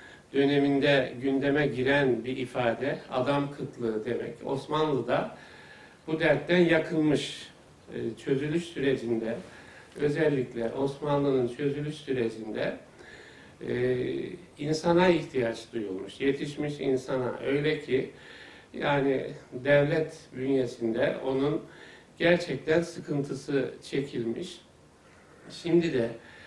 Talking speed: 80 wpm